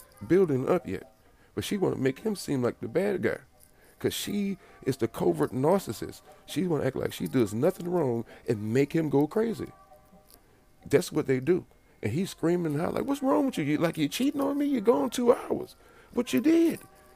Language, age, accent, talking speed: English, 40-59, American, 210 wpm